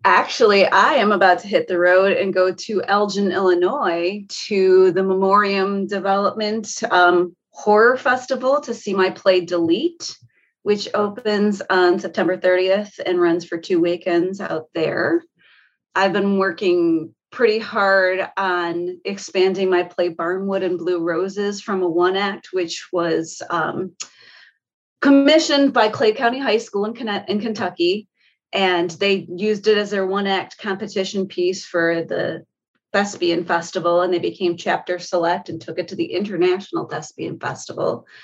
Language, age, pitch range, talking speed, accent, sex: English, 30-49, 180-215 Hz, 145 wpm, American, female